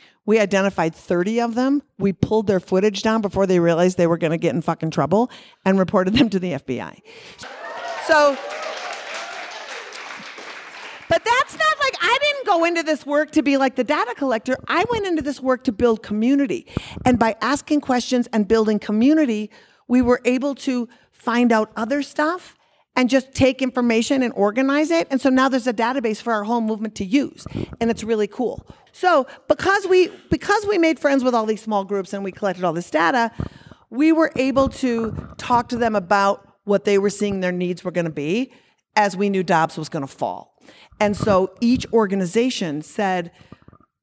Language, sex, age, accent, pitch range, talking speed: English, female, 50-69, American, 195-270 Hz, 190 wpm